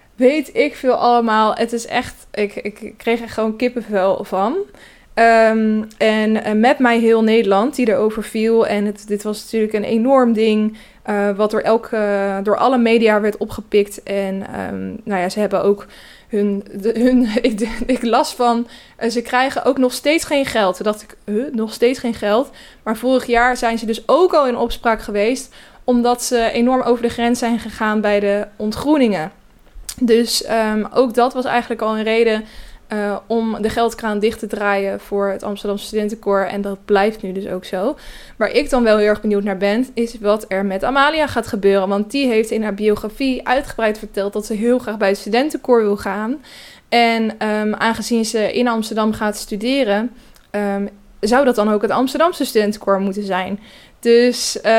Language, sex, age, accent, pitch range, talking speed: Dutch, female, 20-39, Dutch, 210-240 Hz, 190 wpm